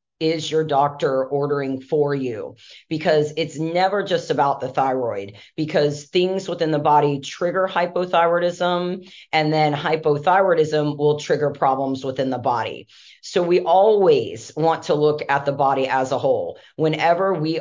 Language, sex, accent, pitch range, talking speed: English, female, American, 145-175 Hz, 145 wpm